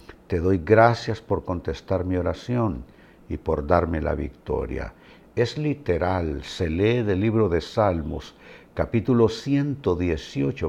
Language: Spanish